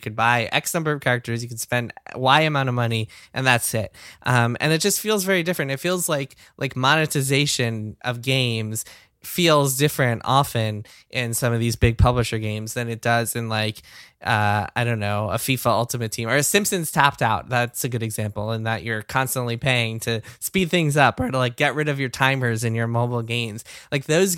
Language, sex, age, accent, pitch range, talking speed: English, male, 10-29, American, 115-135 Hz, 210 wpm